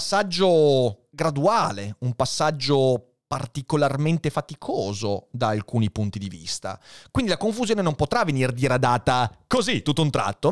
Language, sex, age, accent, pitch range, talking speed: Italian, male, 30-49, native, 120-200 Hz, 125 wpm